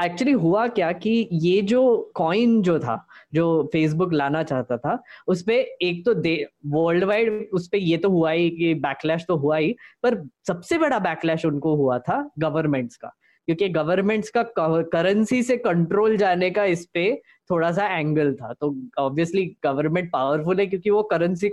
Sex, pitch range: female, 155-205 Hz